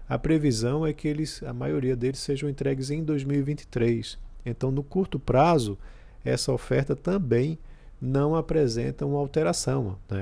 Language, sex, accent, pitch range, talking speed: Portuguese, male, Brazilian, 110-145 Hz, 135 wpm